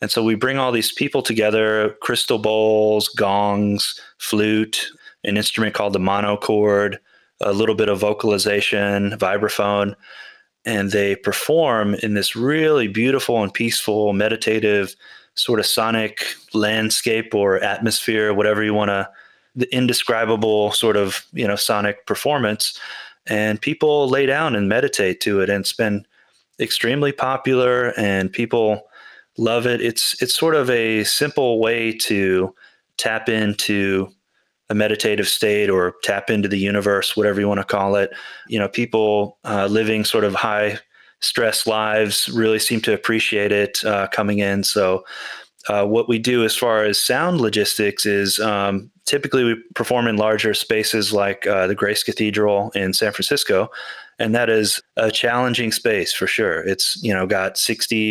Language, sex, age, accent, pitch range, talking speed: English, male, 20-39, American, 100-115 Hz, 155 wpm